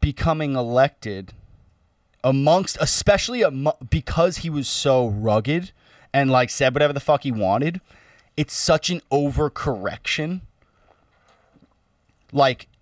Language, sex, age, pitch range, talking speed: English, male, 20-39, 120-155 Hz, 110 wpm